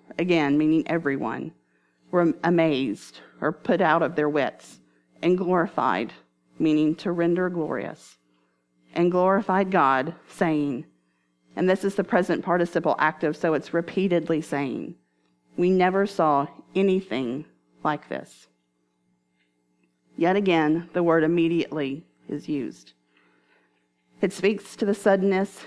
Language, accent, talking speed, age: English, American, 115 wpm, 40-59